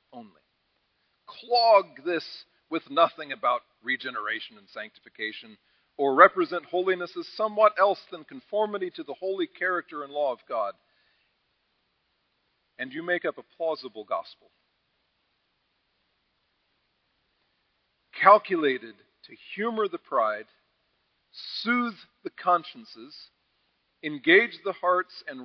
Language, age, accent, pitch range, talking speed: English, 40-59, American, 145-215 Hz, 105 wpm